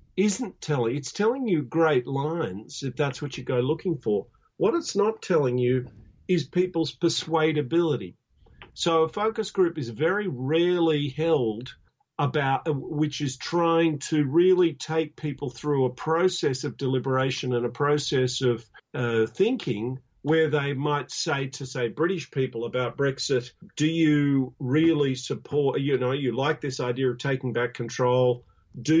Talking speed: 155 wpm